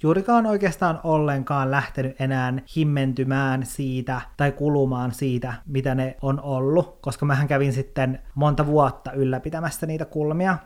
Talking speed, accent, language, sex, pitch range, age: 130 wpm, native, Finnish, male, 130-150 Hz, 30-49